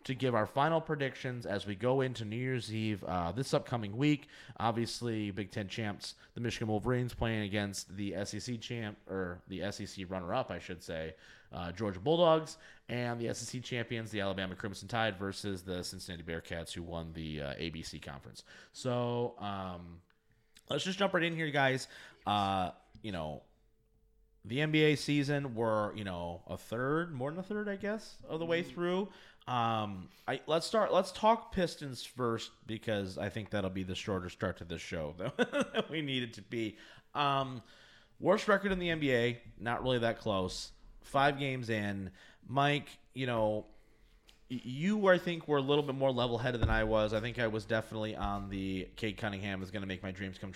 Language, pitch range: English, 100-140 Hz